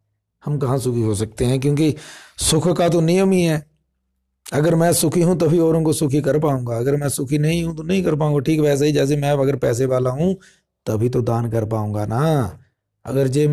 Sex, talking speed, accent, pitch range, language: male, 215 wpm, native, 110-145 Hz, Hindi